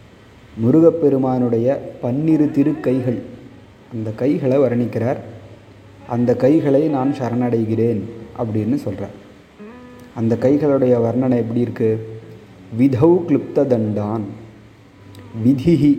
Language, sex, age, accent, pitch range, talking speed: Tamil, male, 30-49, native, 115-135 Hz, 80 wpm